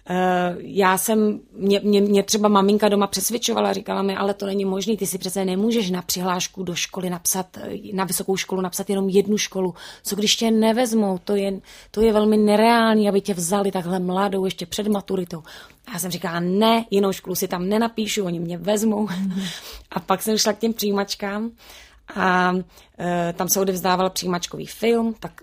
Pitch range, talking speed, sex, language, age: 185-205 Hz, 180 wpm, female, Czech, 30-49